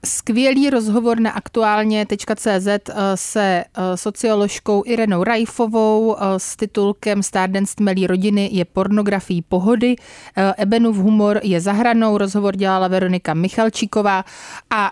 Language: Czech